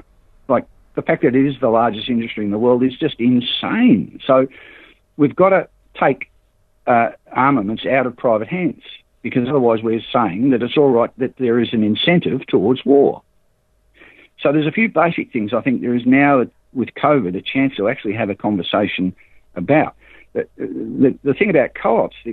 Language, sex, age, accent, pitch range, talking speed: English, male, 60-79, Australian, 105-130 Hz, 185 wpm